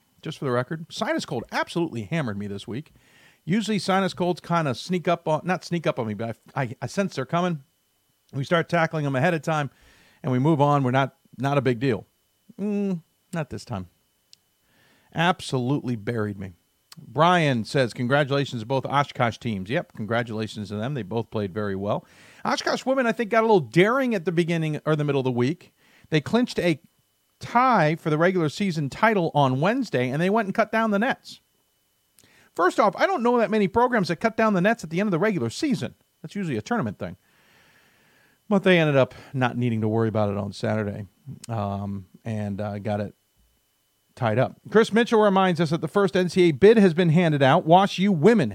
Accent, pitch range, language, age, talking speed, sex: American, 120-185 Hz, English, 50-69, 210 wpm, male